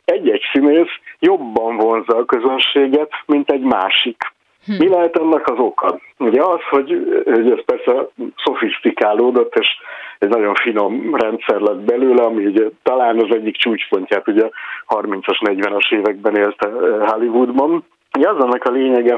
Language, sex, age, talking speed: Hungarian, male, 60-79, 140 wpm